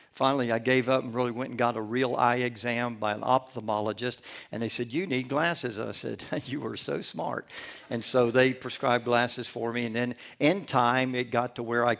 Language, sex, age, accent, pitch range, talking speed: English, male, 60-79, American, 120-135 Hz, 225 wpm